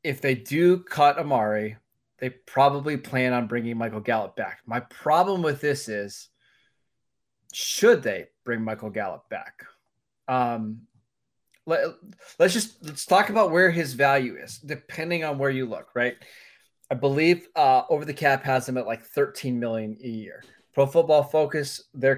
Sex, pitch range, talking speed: male, 120-150 Hz, 160 wpm